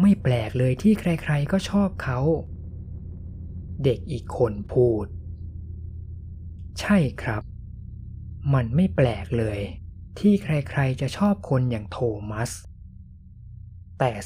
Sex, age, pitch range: male, 20-39, 90-135 Hz